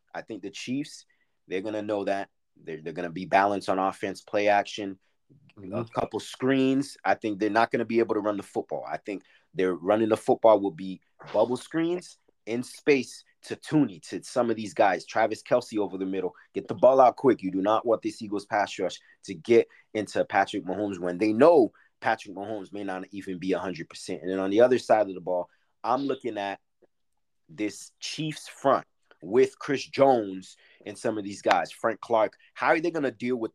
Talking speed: 210 wpm